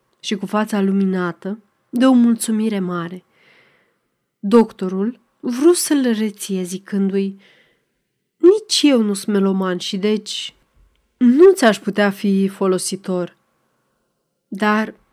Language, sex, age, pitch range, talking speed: Romanian, female, 30-49, 190-250 Hz, 105 wpm